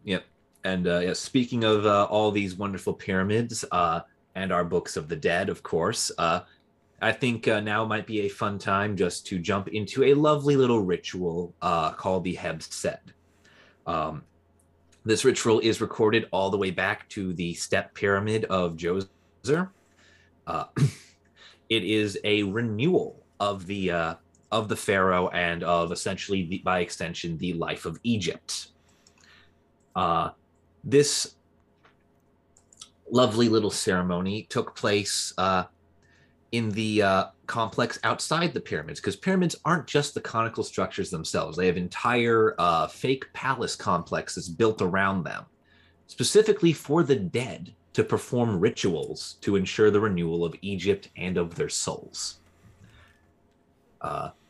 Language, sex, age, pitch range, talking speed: English, male, 30-49, 85-110 Hz, 145 wpm